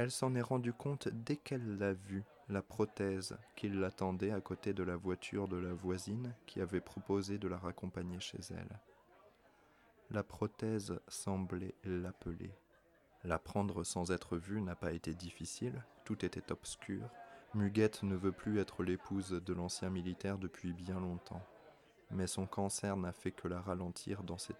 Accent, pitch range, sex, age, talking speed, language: French, 90-105 Hz, male, 20-39, 165 wpm, French